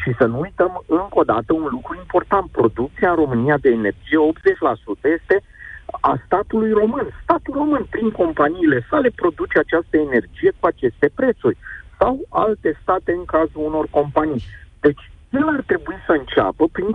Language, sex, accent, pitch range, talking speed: Romanian, male, native, 130-220 Hz, 160 wpm